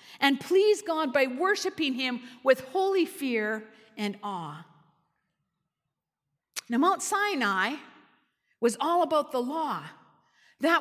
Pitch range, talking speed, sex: 240-345 Hz, 110 wpm, female